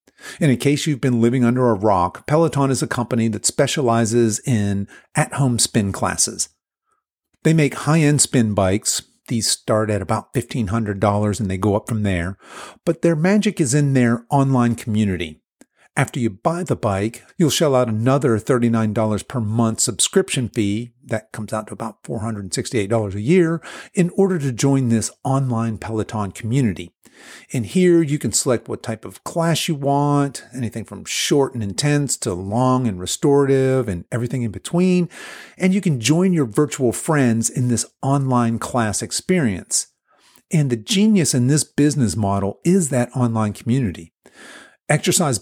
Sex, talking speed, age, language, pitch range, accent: male, 160 wpm, 50-69, English, 110-140 Hz, American